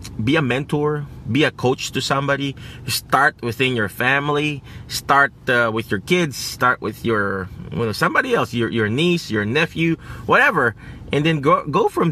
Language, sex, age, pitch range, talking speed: English, male, 30-49, 115-155 Hz, 175 wpm